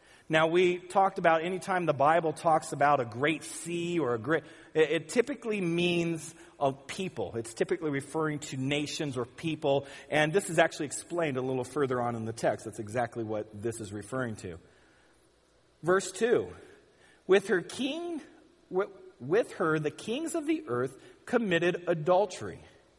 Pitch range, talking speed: 140-200 Hz, 155 wpm